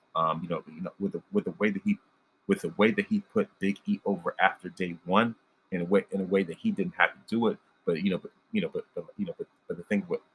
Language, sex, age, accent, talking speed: English, male, 30-49, American, 300 wpm